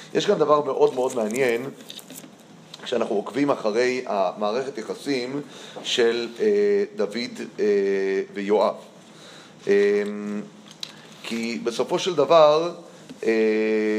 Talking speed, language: 95 wpm, Hebrew